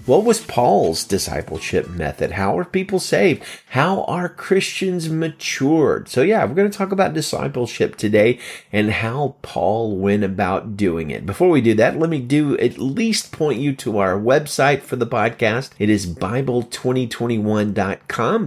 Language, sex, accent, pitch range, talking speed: English, male, American, 100-150 Hz, 160 wpm